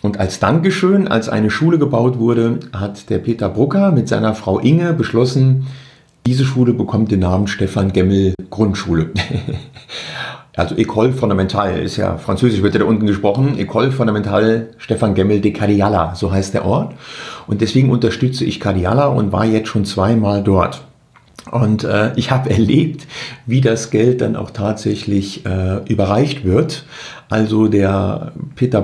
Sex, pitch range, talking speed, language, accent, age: male, 105-135 Hz, 155 wpm, German, German, 50-69